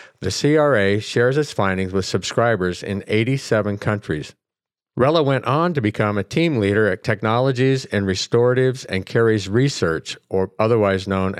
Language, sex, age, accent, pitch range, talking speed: English, male, 50-69, American, 95-125 Hz, 145 wpm